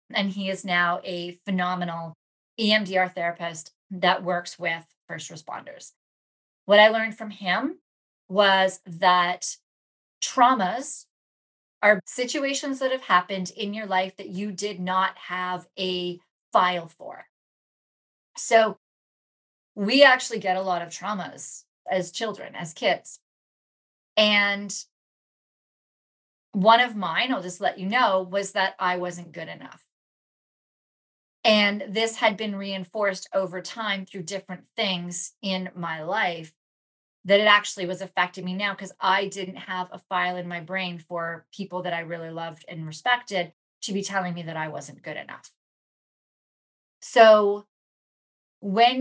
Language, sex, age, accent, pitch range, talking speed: English, female, 30-49, American, 180-210 Hz, 135 wpm